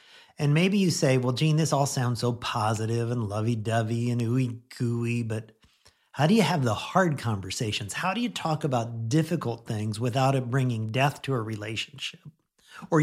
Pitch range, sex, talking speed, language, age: 120-165 Hz, male, 175 wpm, English, 50-69